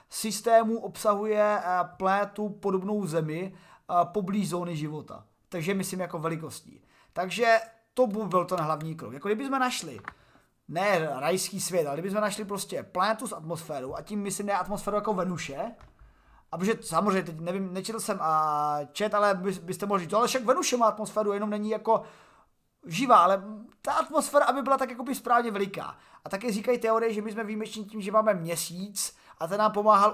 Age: 30-49